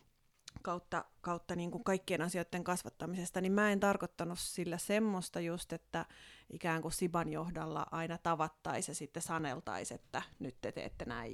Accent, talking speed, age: native, 155 wpm, 30-49